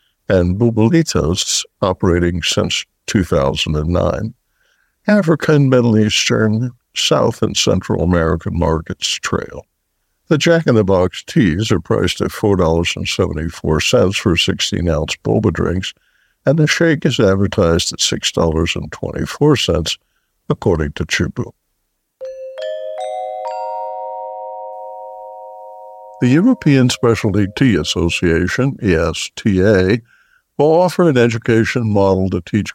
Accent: American